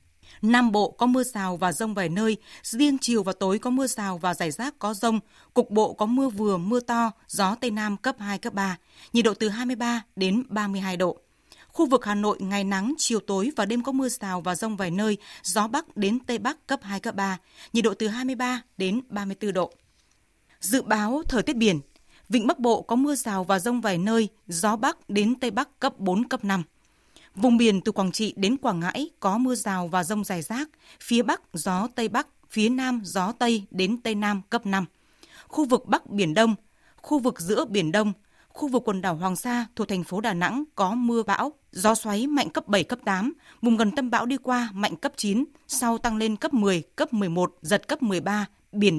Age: 20-39